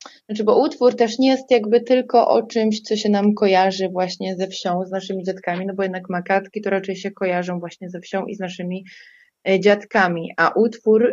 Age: 20-39